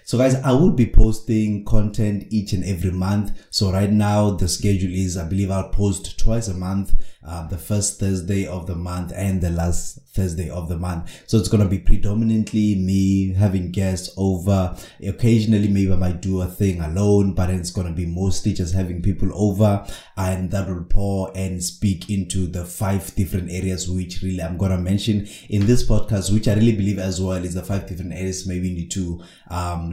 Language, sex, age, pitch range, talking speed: English, male, 20-39, 90-105 Hz, 205 wpm